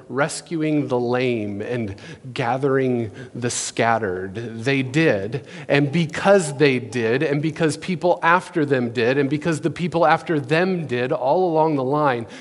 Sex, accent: male, American